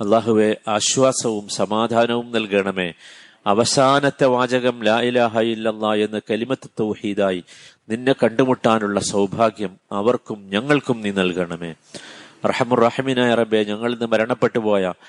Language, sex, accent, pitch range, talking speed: Malayalam, male, native, 105-120 Hz, 85 wpm